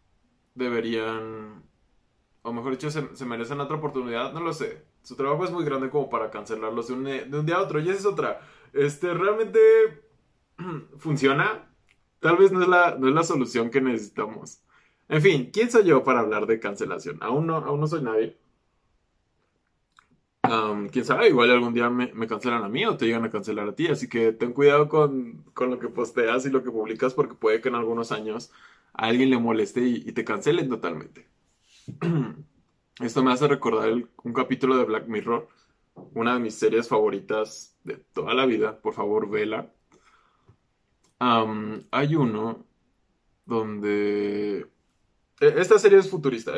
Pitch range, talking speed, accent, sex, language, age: 115-155 Hz, 170 wpm, Mexican, male, Spanish, 20-39